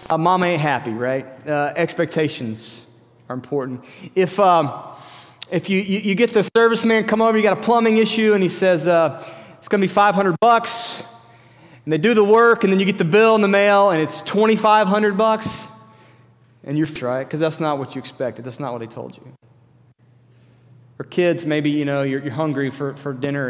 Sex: male